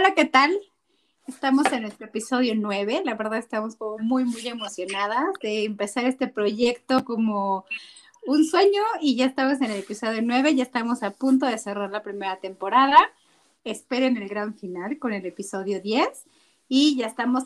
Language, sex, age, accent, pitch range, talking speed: Spanish, female, 30-49, Mexican, 215-270 Hz, 170 wpm